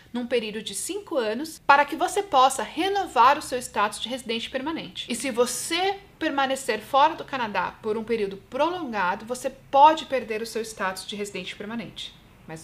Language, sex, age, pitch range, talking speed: Portuguese, female, 40-59, 220-290 Hz, 175 wpm